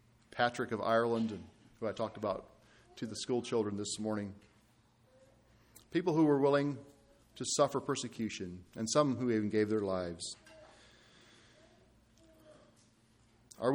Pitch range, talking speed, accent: 110-125 Hz, 120 wpm, American